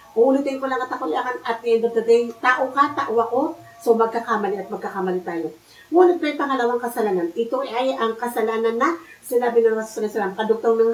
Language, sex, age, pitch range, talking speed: Filipino, female, 50-69, 225-275 Hz, 190 wpm